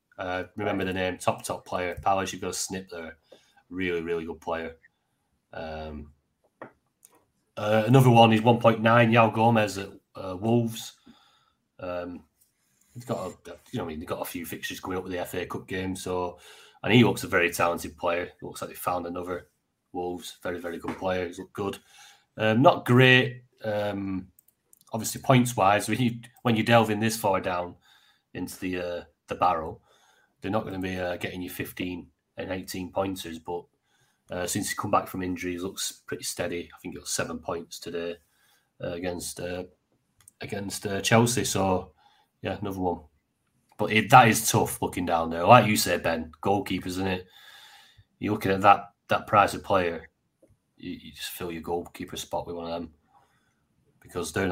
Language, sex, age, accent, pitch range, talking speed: English, male, 30-49, British, 90-110 Hz, 185 wpm